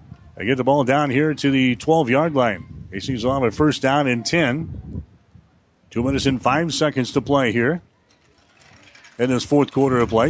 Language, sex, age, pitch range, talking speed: English, male, 40-59, 125-150 Hz, 190 wpm